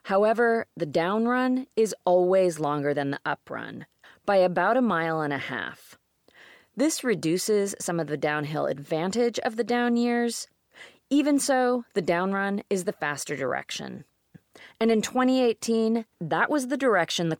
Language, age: English, 30-49